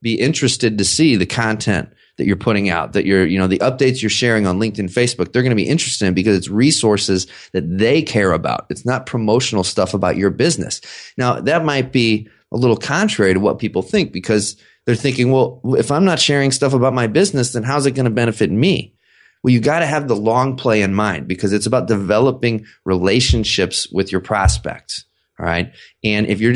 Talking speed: 210 wpm